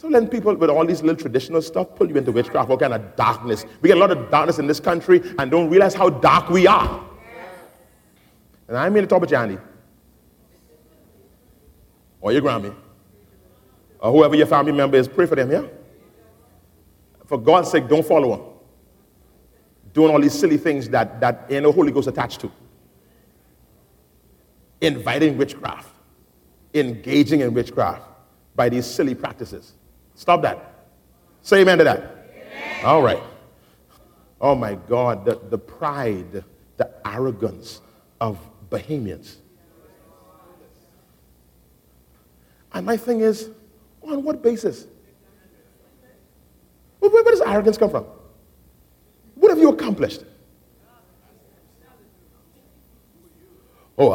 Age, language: 40-59, English